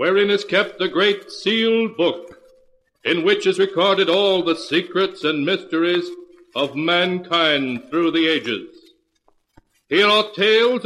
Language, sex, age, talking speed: English, male, 60-79, 135 wpm